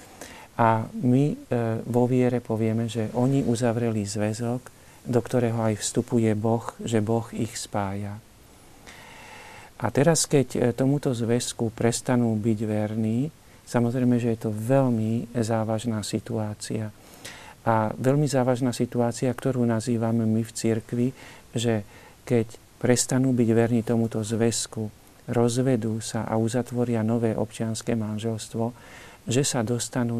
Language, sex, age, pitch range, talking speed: Slovak, male, 50-69, 110-125 Hz, 115 wpm